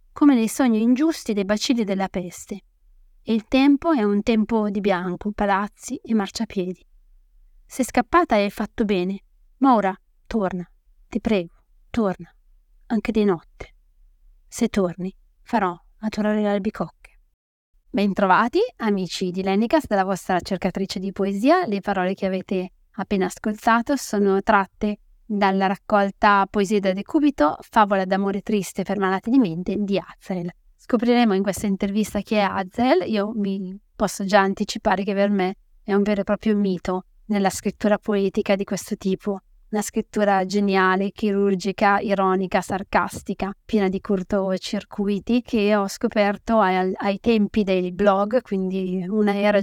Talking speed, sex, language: 145 wpm, female, Italian